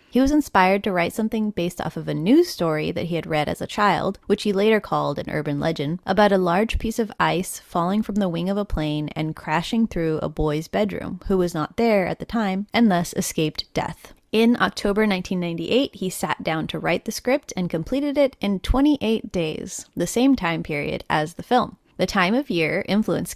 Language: English